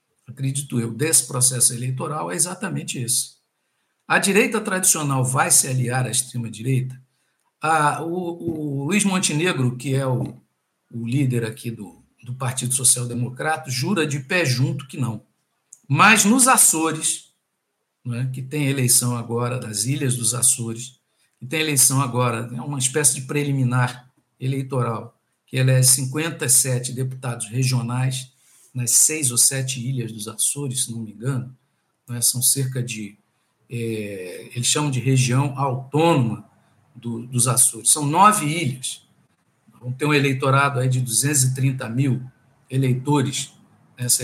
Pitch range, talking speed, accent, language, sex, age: 125-145 Hz, 135 wpm, Brazilian, Portuguese, male, 60-79